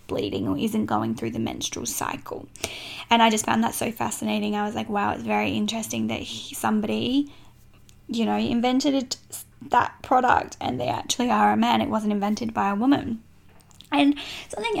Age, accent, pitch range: 10-29, Australian, 215-255 Hz